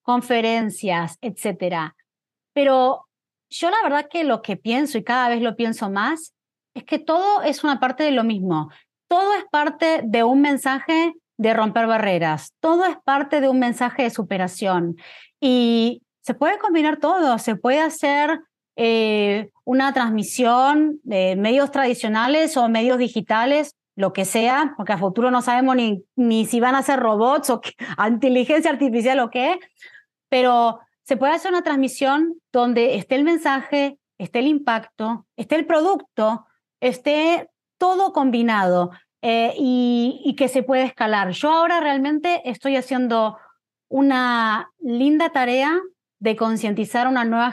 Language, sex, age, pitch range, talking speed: English, female, 30-49, 225-290 Hz, 150 wpm